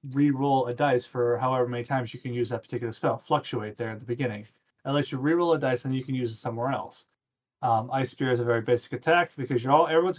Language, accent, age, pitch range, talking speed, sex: English, American, 30-49, 120-140 Hz, 255 wpm, male